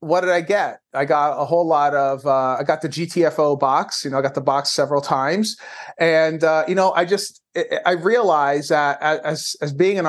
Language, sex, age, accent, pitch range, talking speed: English, male, 30-49, American, 140-185 Hz, 220 wpm